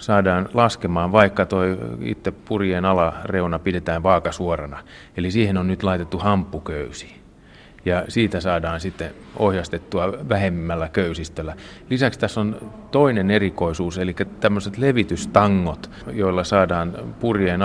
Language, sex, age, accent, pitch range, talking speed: Finnish, male, 30-49, native, 85-105 Hz, 110 wpm